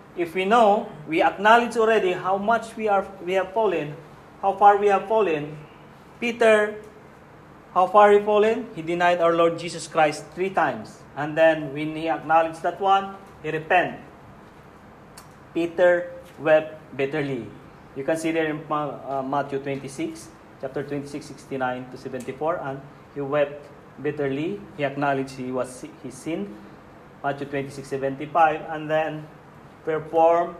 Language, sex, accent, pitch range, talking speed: English, male, Filipino, 145-190 Hz, 140 wpm